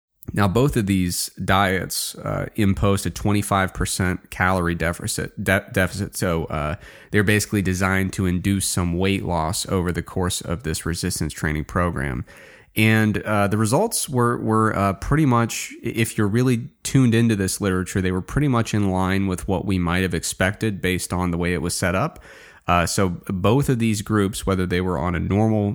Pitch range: 90-105 Hz